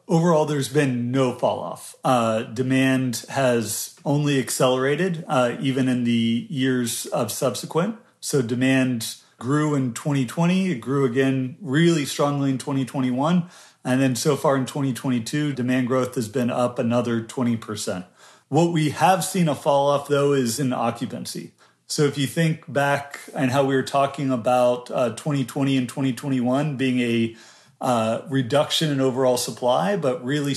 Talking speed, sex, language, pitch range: 155 wpm, male, English, 125-150 Hz